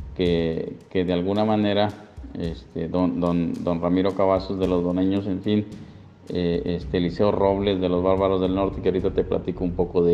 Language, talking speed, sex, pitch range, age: Spanish, 190 wpm, male, 90-105 Hz, 50-69